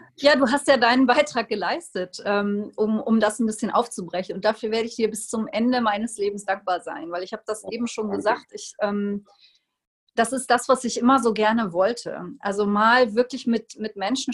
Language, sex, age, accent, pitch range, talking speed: German, female, 30-49, German, 210-245 Hz, 195 wpm